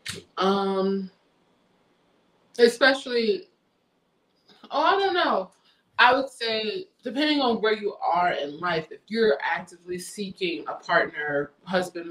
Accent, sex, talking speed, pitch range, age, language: American, female, 115 wpm, 160-200 Hz, 20-39, English